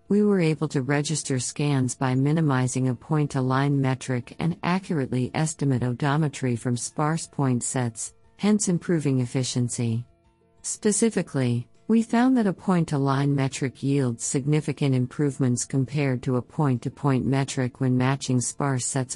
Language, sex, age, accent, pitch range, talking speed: English, female, 50-69, American, 125-150 Hz, 130 wpm